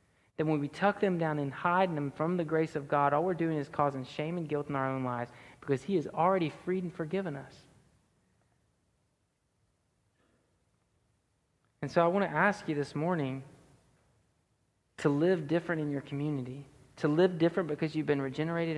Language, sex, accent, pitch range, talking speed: English, male, American, 130-170 Hz, 180 wpm